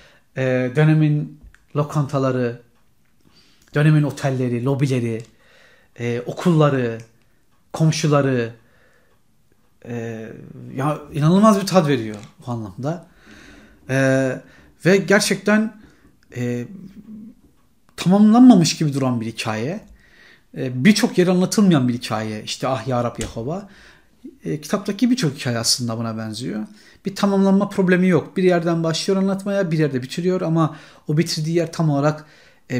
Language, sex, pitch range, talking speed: Turkish, male, 125-170 Hz, 110 wpm